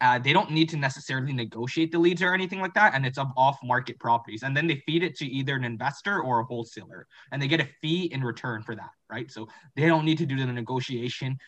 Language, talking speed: English, 255 wpm